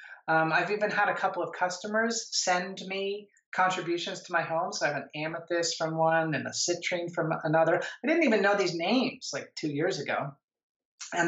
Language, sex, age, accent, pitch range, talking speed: English, male, 30-49, American, 155-205 Hz, 195 wpm